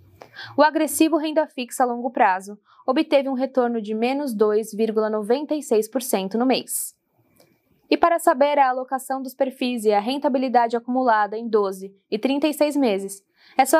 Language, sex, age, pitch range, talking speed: Portuguese, female, 10-29, 220-285 Hz, 145 wpm